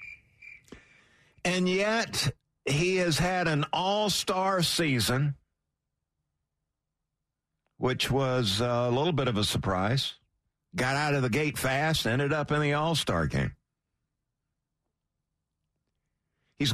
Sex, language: male, English